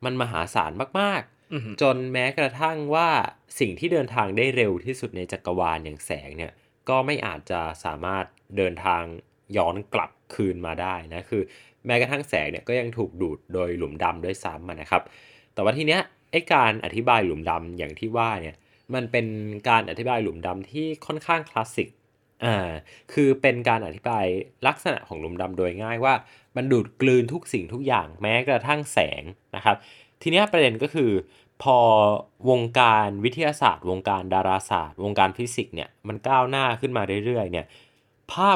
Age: 20-39